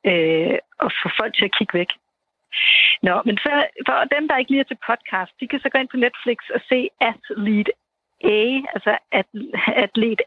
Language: Danish